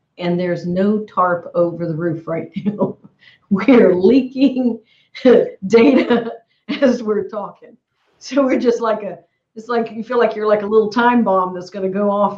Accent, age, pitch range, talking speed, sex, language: American, 50-69, 180-215 Hz, 170 wpm, female, English